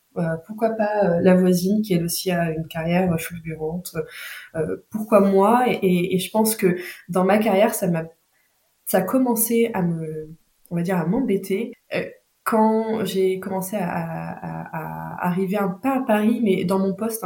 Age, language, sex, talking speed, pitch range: 20-39, French, female, 165 wpm, 175-210 Hz